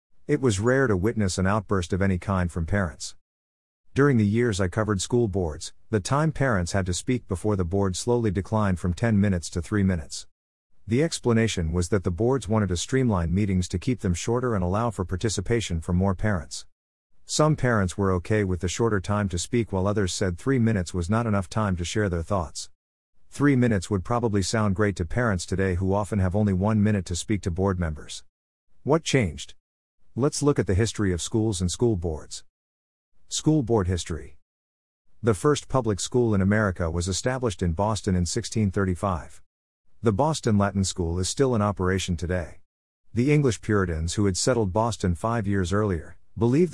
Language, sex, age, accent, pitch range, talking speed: English, male, 50-69, American, 90-115 Hz, 190 wpm